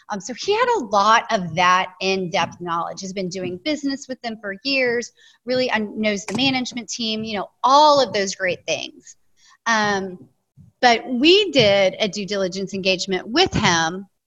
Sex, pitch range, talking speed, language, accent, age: female, 185-240 Hz, 170 wpm, English, American, 30-49